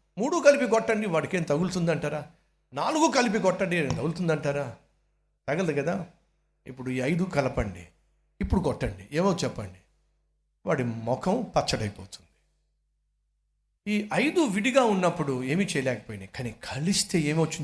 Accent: native